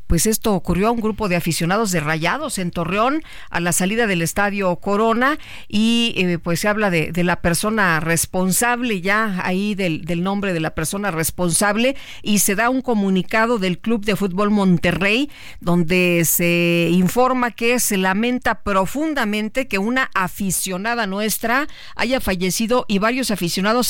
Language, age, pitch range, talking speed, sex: Spanish, 50-69, 175-230 Hz, 160 wpm, female